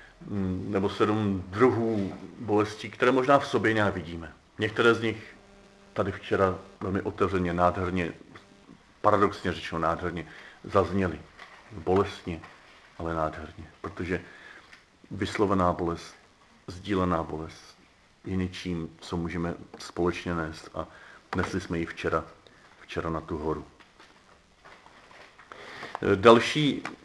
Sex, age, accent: male, 40-59, native